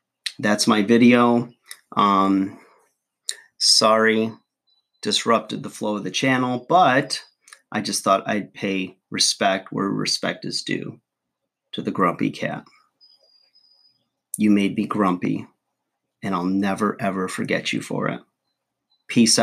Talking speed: 120 wpm